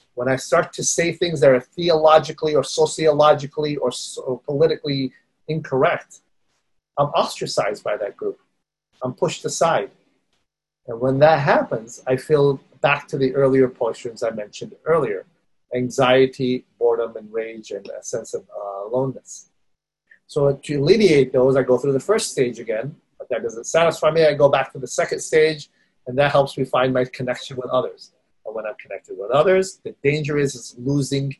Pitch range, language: 130-160 Hz, English